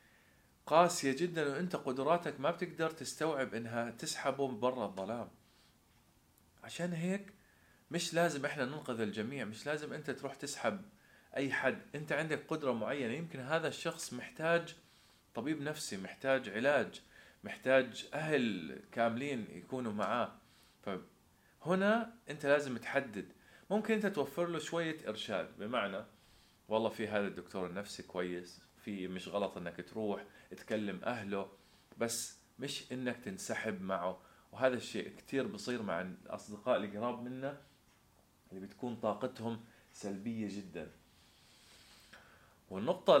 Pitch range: 105-150 Hz